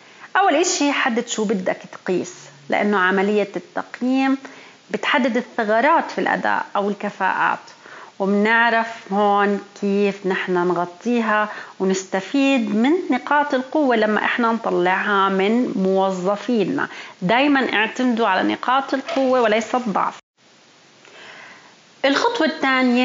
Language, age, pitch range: Arabic, 30-49, 205-265 Hz